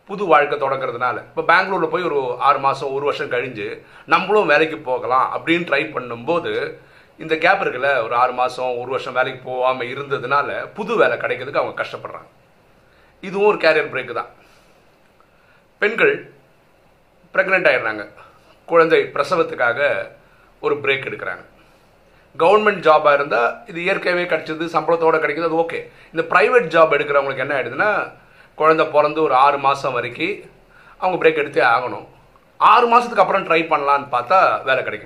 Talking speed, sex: 135 wpm, male